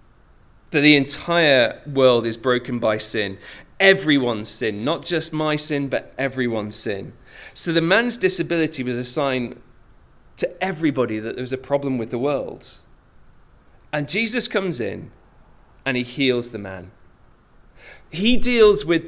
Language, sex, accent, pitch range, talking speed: English, male, British, 105-150 Hz, 145 wpm